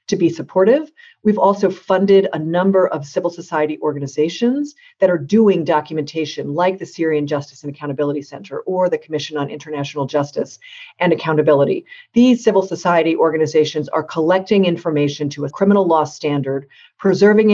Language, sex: English, female